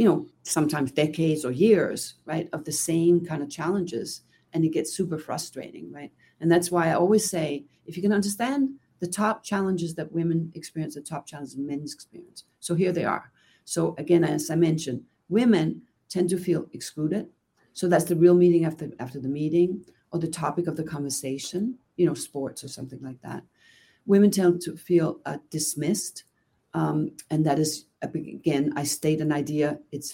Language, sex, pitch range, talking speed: English, female, 150-185 Hz, 185 wpm